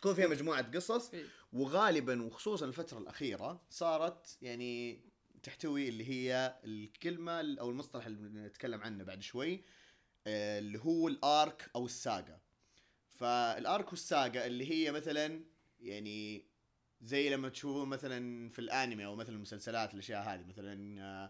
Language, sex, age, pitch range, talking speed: Arabic, male, 30-49, 105-150 Hz, 125 wpm